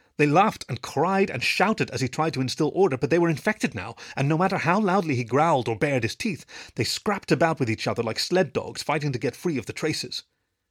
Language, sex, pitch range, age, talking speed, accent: English, male, 115-165 Hz, 30-49, 245 wpm, British